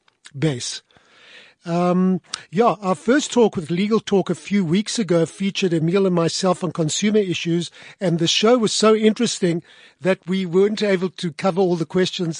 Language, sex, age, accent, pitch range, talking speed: English, male, 50-69, German, 165-200 Hz, 170 wpm